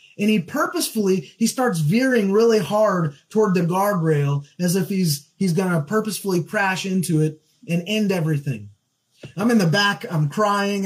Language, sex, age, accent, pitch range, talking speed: English, male, 20-39, American, 155-210 Hz, 165 wpm